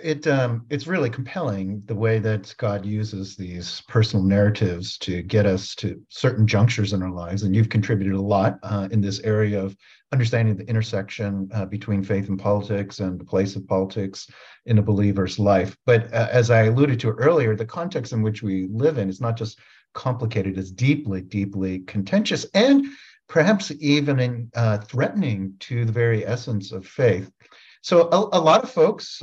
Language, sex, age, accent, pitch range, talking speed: English, male, 50-69, American, 100-135 Hz, 185 wpm